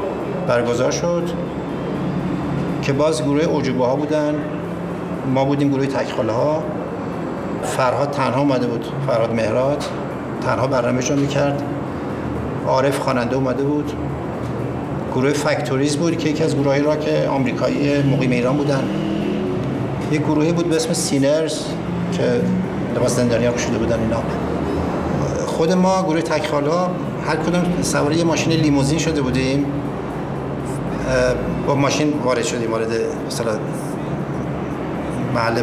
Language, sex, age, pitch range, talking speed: Persian, male, 50-69, 125-155 Hz, 115 wpm